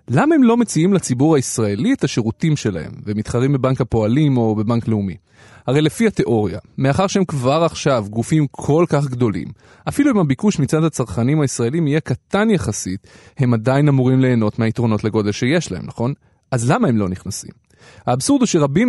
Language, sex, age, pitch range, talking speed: Hebrew, male, 30-49, 115-165 Hz, 165 wpm